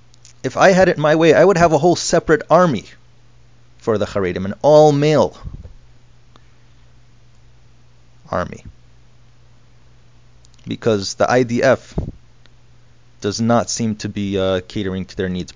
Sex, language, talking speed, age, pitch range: male, English, 125 wpm, 30-49, 110-120 Hz